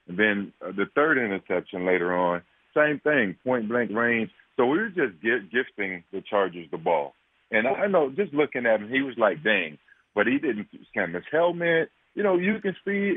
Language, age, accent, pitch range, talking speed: English, 40-59, American, 95-120 Hz, 185 wpm